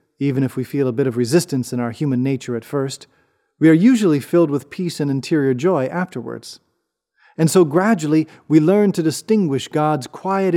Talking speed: 185 wpm